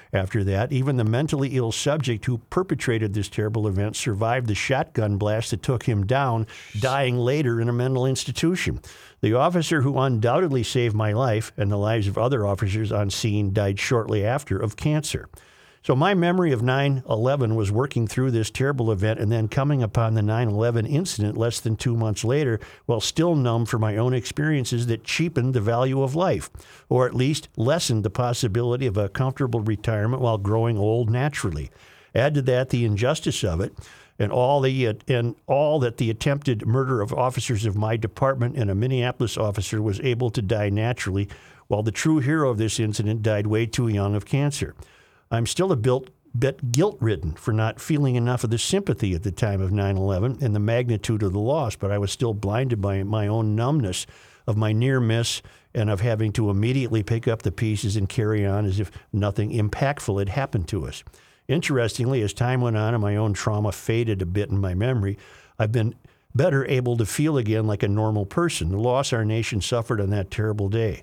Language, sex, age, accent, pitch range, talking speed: English, male, 50-69, American, 105-130 Hz, 195 wpm